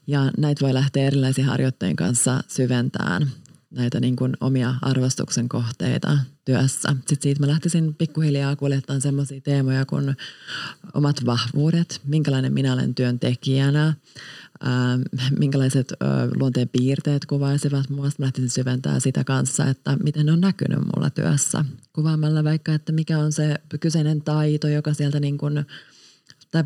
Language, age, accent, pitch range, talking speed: Finnish, 30-49, native, 130-150 Hz, 135 wpm